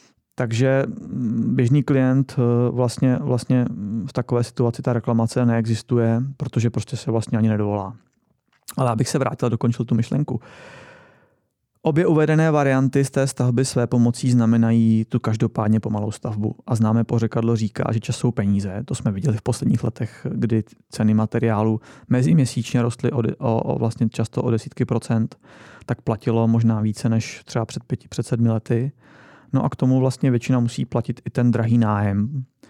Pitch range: 115-130 Hz